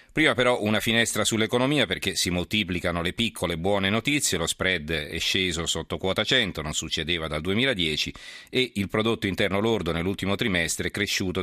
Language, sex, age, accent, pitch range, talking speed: Italian, male, 40-59, native, 85-100 Hz, 170 wpm